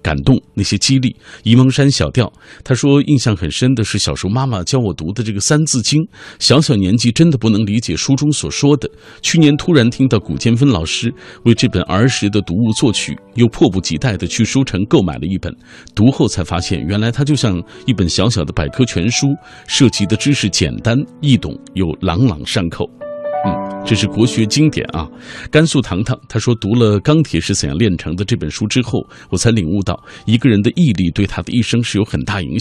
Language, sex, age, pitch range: Chinese, male, 50-69, 95-135 Hz